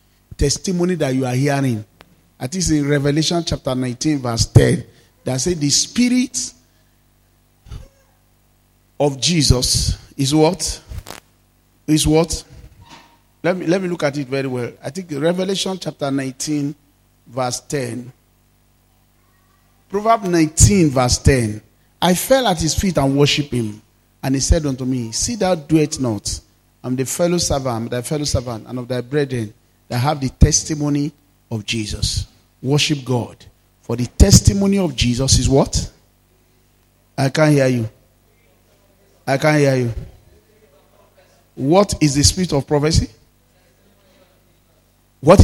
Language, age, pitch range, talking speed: English, 40-59, 120-155 Hz, 135 wpm